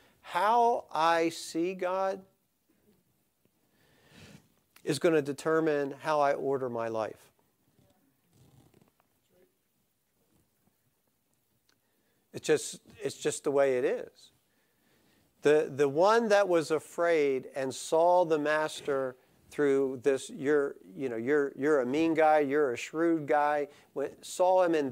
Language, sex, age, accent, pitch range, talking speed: English, male, 50-69, American, 135-170 Hz, 115 wpm